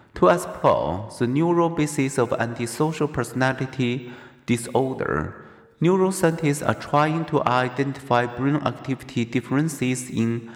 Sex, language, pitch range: male, Chinese, 115-145 Hz